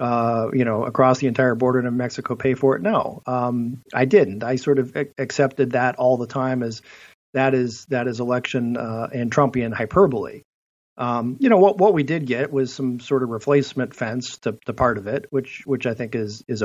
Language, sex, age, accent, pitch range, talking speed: English, male, 40-59, American, 115-135 Hz, 215 wpm